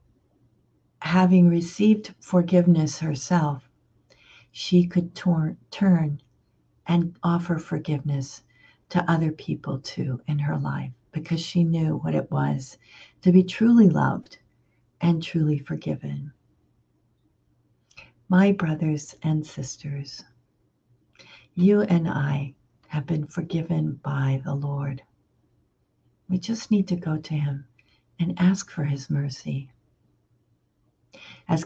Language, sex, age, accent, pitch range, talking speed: English, female, 60-79, American, 130-170 Hz, 105 wpm